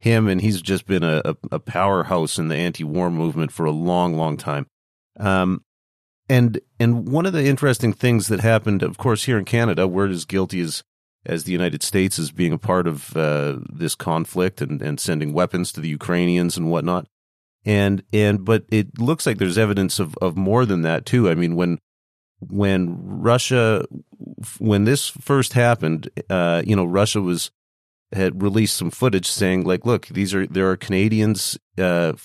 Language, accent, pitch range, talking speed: English, American, 85-105 Hz, 180 wpm